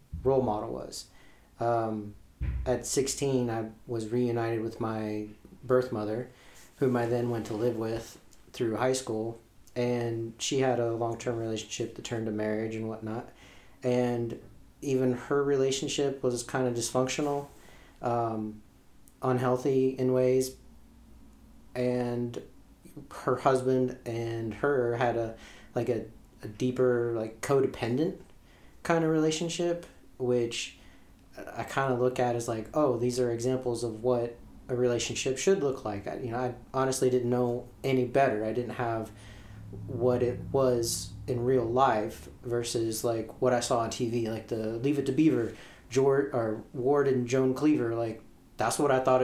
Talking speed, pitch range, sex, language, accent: 150 wpm, 110-130 Hz, male, English, American